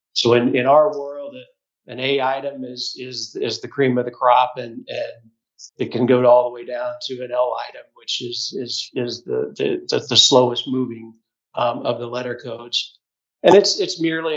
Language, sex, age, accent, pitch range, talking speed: English, male, 50-69, American, 125-150 Hz, 200 wpm